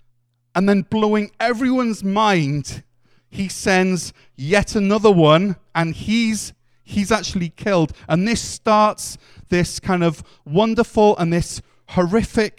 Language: English